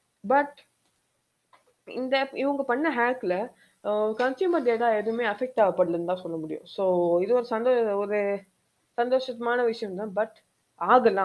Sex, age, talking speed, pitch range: female, 20-39, 125 wpm, 185-255 Hz